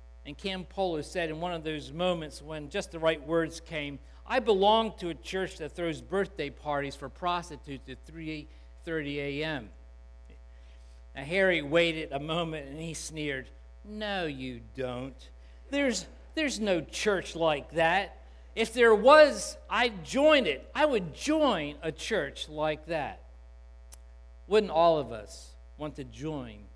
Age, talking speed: 50-69, 150 wpm